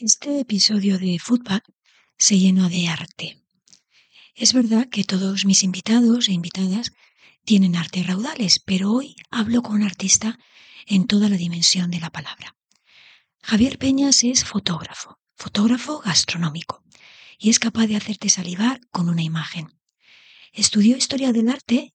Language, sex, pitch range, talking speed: Spanish, female, 190-235 Hz, 140 wpm